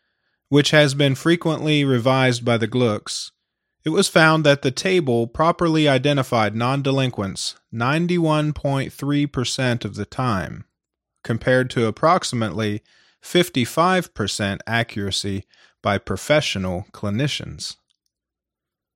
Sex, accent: male, American